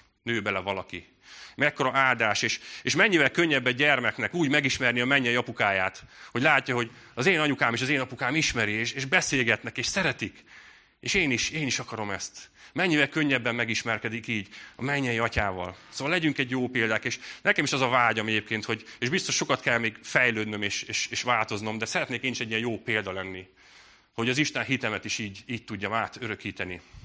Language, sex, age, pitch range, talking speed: Hungarian, male, 30-49, 110-140 Hz, 190 wpm